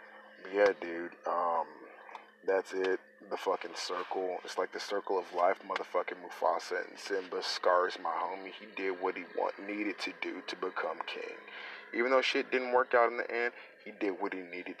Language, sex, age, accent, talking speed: English, male, 30-49, American, 185 wpm